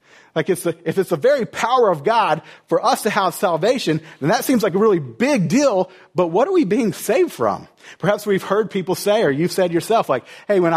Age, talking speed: 40-59, 235 wpm